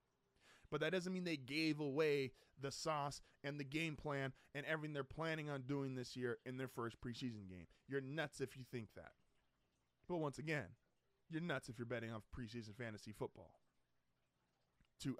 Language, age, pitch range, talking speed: English, 20-39, 115-140 Hz, 180 wpm